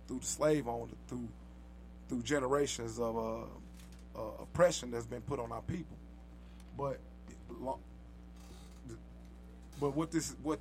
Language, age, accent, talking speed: English, 20-39, American, 135 wpm